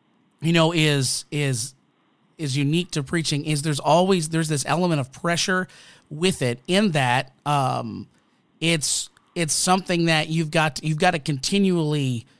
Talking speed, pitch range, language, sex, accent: 155 wpm, 135-165 Hz, English, male, American